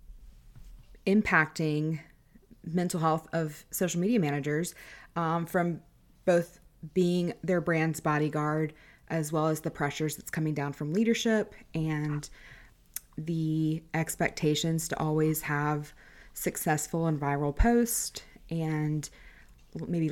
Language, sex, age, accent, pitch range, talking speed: English, female, 20-39, American, 145-175 Hz, 105 wpm